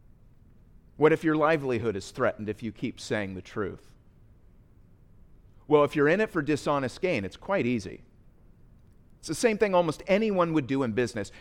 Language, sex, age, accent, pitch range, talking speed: English, male, 40-59, American, 115-155 Hz, 175 wpm